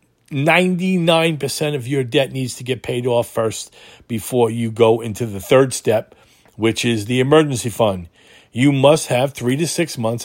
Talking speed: 170 wpm